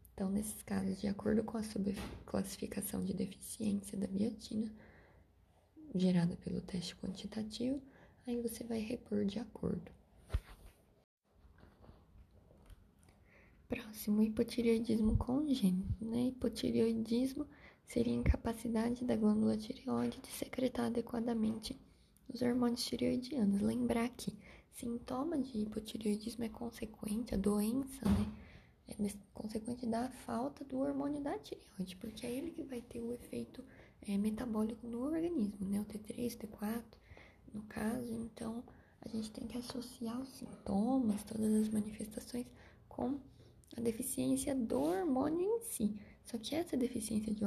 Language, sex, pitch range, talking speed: Portuguese, female, 205-245 Hz, 125 wpm